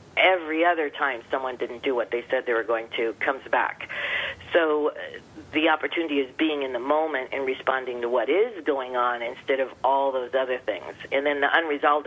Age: 40-59